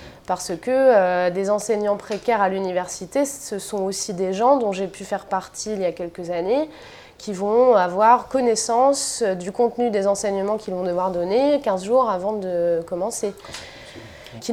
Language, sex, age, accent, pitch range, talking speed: French, female, 20-39, French, 185-220 Hz, 170 wpm